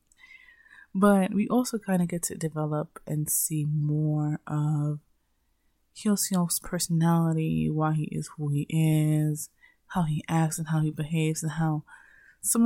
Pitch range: 150-185 Hz